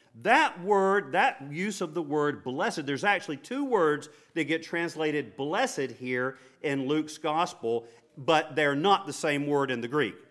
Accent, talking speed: American, 170 wpm